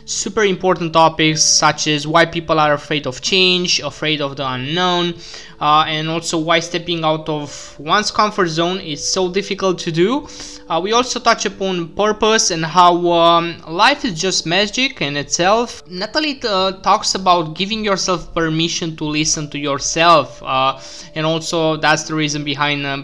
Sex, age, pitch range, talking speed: male, 20-39, 155-190 Hz, 165 wpm